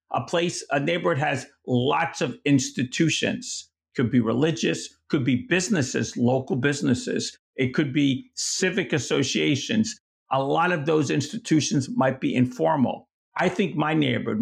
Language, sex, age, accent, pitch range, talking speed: English, male, 50-69, American, 125-165 Hz, 140 wpm